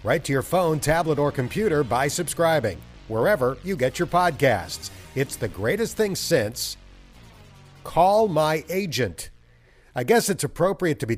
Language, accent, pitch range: English, American, 115-160 Hz